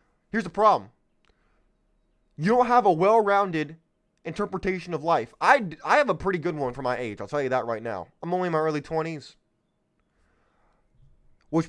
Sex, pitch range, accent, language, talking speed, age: male, 140-180 Hz, American, English, 175 wpm, 20-39